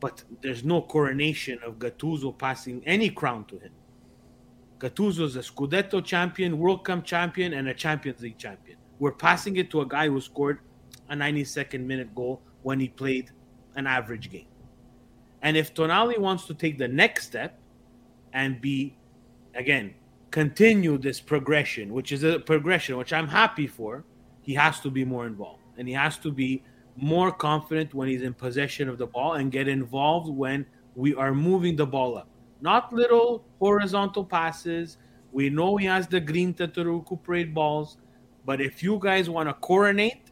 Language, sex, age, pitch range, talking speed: Italian, male, 30-49, 130-180 Hz, 170 wpm